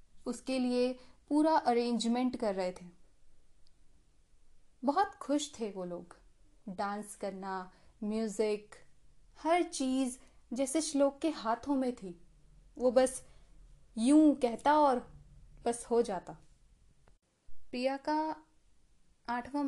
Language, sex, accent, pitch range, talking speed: Hindi, female, native, 205-265 Hz, 105 wpm